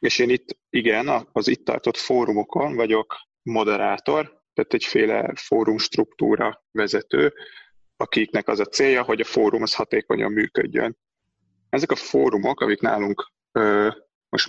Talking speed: 130 wpm